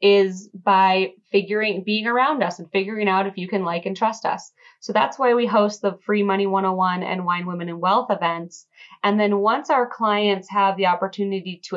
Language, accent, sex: English, American, female